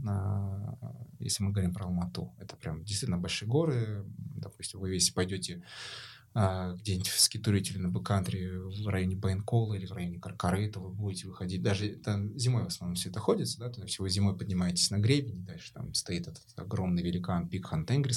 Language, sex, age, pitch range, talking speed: Russian, male, 20-39, 95-115 Hz, 190 wpm